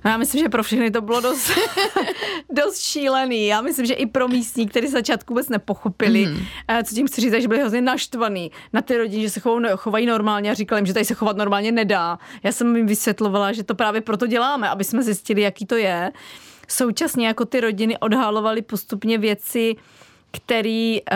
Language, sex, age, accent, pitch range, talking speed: Czech, female, 30-49, native, 215-245 Hz, 190 wpm